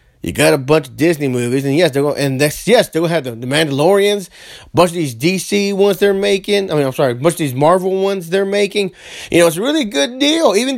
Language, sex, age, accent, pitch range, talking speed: English, male, 30-49, American, 145-200 Hz, 250 wpm